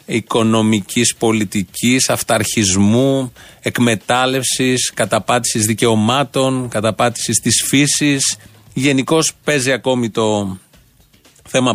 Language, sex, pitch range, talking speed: Greek, male, 110-130 Hz, 70 wpm